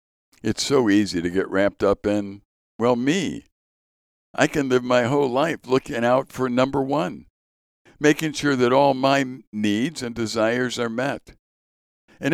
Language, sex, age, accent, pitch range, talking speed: English, male, 60-79, American, 100-130 Hz, 155 wpm